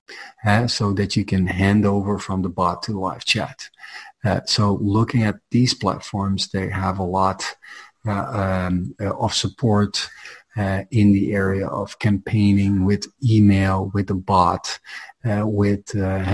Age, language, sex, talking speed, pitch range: 40-59, English, male, 150 wpm, 95-105 Hz